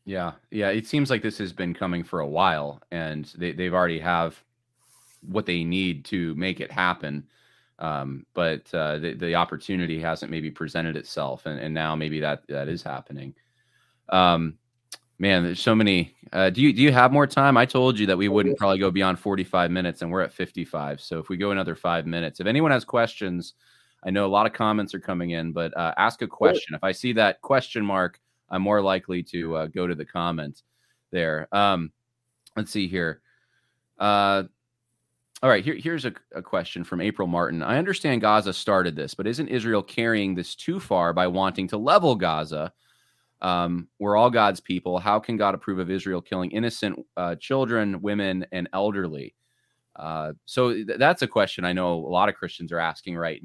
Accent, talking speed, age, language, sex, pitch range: American, 195 wpm, 20-39, English, male, 85-110 Hz